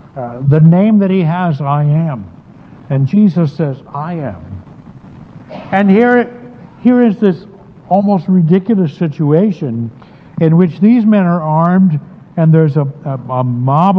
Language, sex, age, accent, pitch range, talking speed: English, male, 60-79, American, 135-190 Hz, 140 wpm